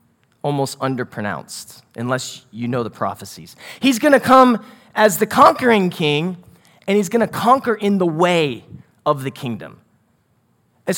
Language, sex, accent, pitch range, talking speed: English, male, American, 155-240 Hz, 150 wpm